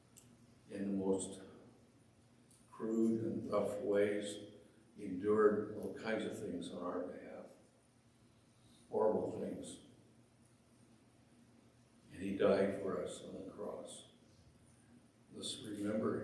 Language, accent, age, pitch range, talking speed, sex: English, American, 60-79, 100-120 Hz, 105 wpm, male